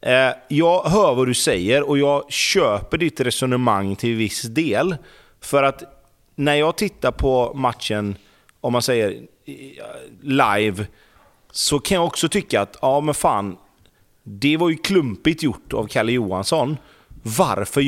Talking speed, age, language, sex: 145 wpm, 30-49, Swedish, male